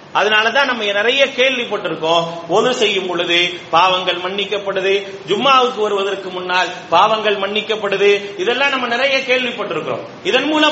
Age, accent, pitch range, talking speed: 30-49, Indian, 175-235 Hz, 135 wpm